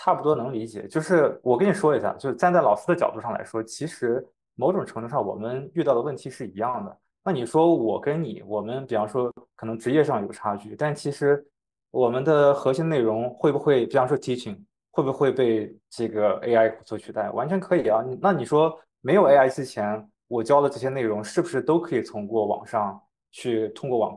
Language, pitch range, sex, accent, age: Chinese, 115-160 Hz, male, native, 20-39